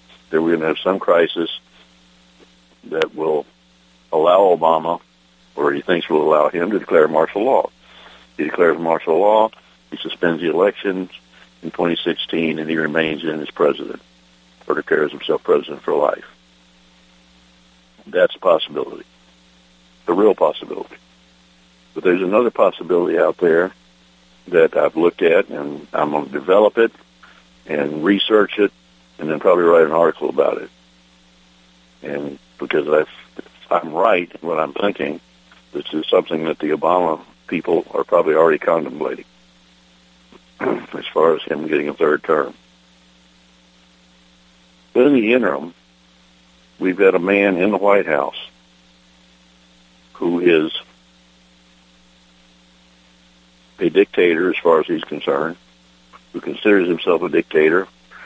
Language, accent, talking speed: English, American, 135 wpm